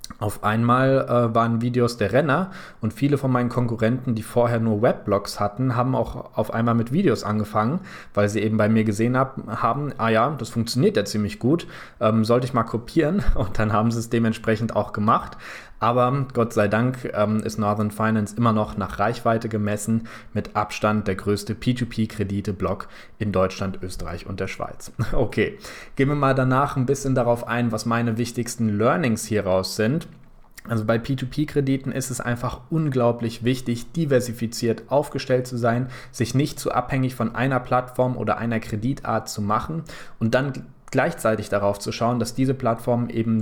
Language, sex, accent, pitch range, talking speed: German, male, German, 110-125 Hz, 170 wpm